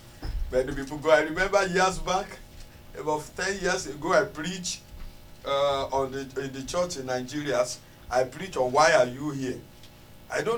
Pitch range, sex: 125-170 Hz, male